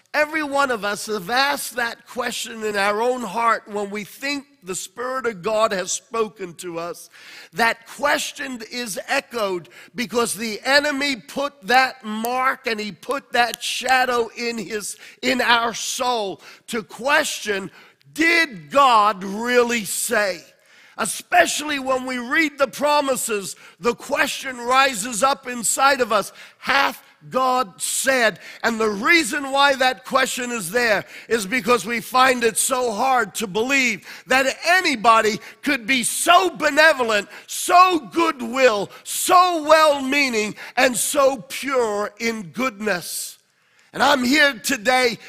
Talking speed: 135 wpm